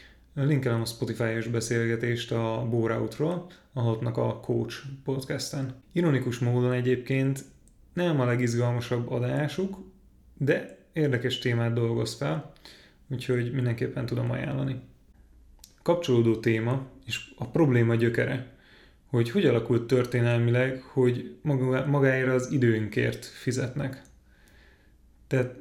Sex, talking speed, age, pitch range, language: male, 100 wpm, 30-49, 115-135 Hz, Hungarian